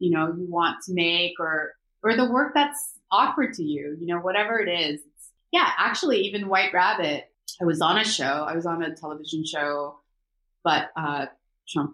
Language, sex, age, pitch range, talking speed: English, female, 20-39, 150-175 Hz, 195 wpm